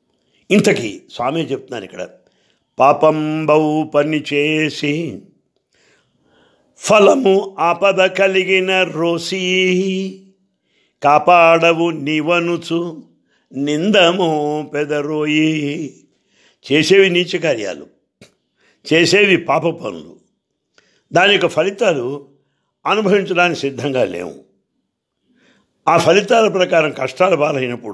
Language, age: English, 60-79